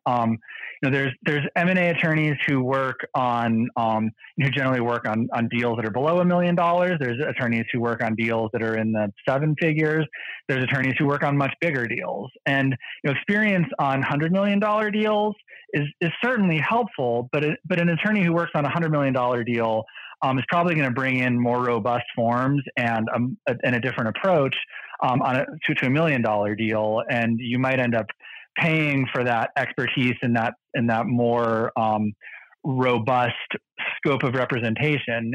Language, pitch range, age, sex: English, 115-150 Hz, 20-39, male